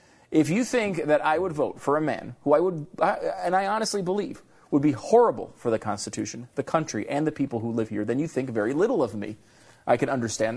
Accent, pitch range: American, 115-160 Hz